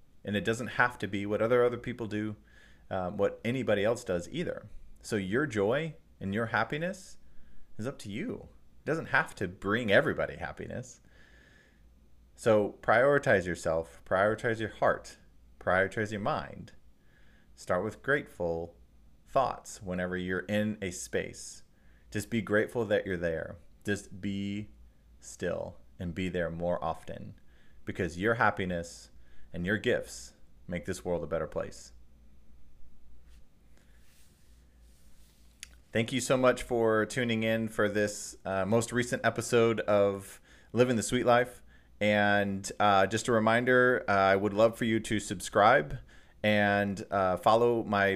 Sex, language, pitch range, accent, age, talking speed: male, English, 85-115 Hz, American, 30-49, 140 wpm